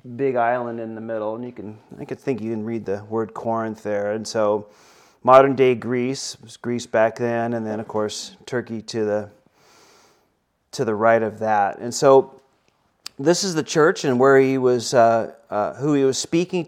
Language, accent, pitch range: English, American, 115-135 Hz